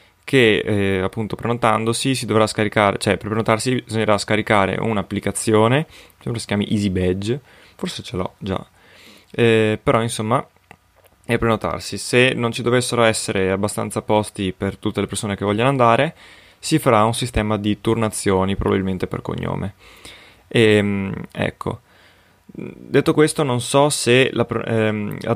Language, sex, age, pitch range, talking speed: Italian, male, 20-39, 100-115 Hz, 135 wpm